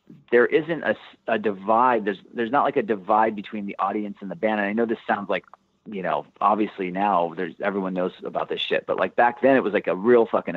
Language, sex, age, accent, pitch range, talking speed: English, male, 30-49, American, 105-125 Hz, 245 wpm